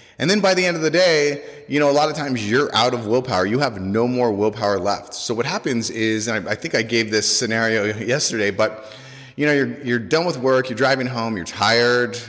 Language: English